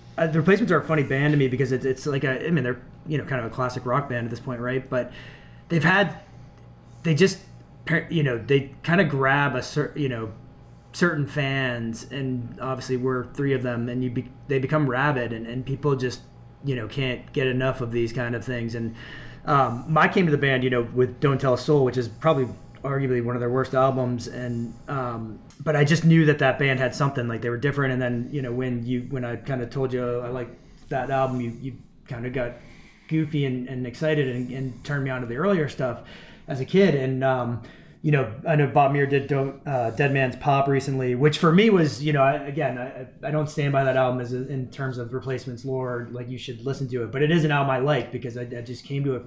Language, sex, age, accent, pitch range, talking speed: English, male, 20-39, American, 125-145 Hz, 245 wpm